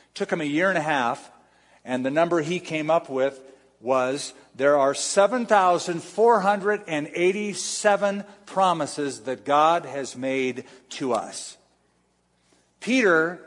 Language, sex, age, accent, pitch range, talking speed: English, male, 50-69, American, 135-180 Hz, 115 wpm